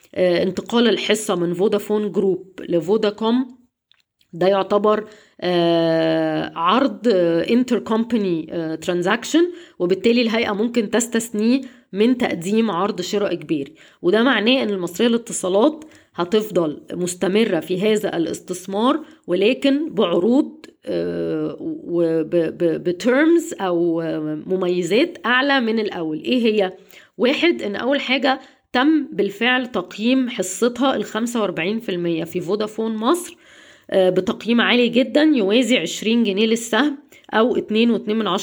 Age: 20-39